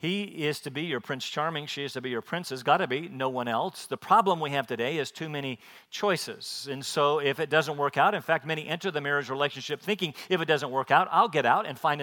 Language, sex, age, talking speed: English, male, 50-69, 270 wpm